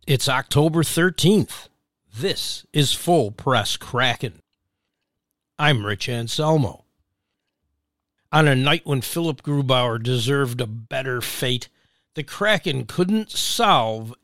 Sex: male